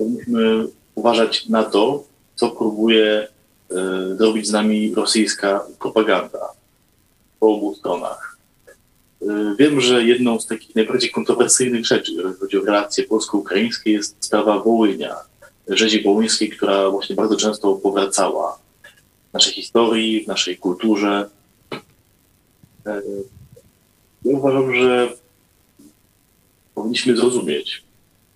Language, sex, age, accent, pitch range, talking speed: Polish, male, 30-49, native, 100-120 Hz, 105 wpm